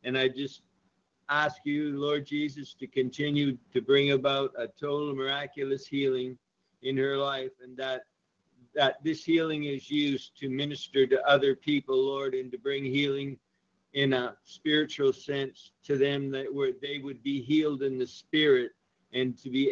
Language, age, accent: English, 50-69, American